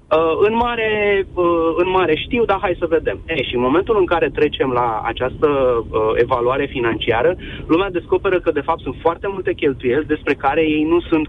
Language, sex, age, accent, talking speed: Romanian, male, 30-49, native, 170 wpm